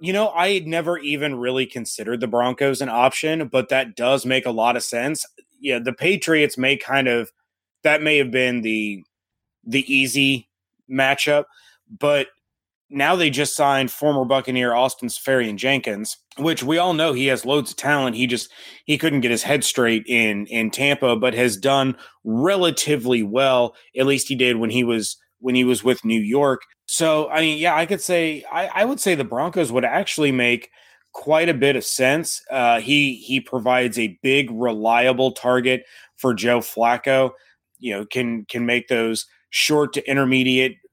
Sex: male